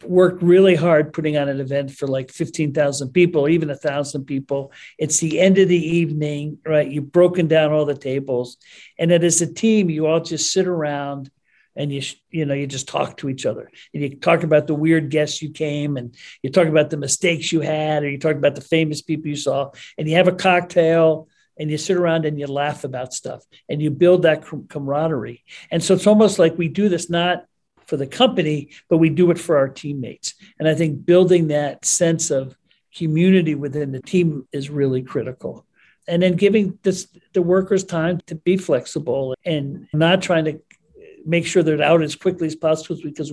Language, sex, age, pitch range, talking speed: English, male, 50-69, 145-175 Hz, 205 wpm